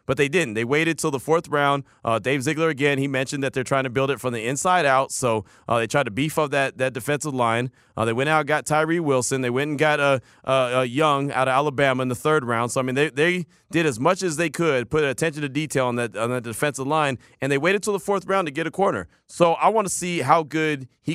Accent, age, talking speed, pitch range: American, 30-49, 280 wpm, 130-155 Hz